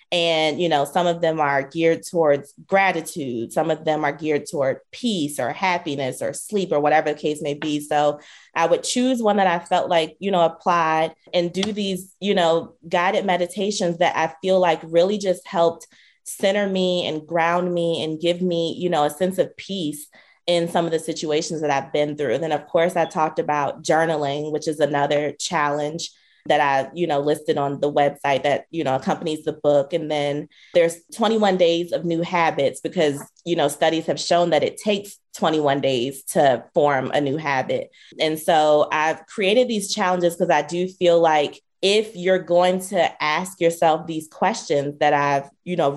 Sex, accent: female, American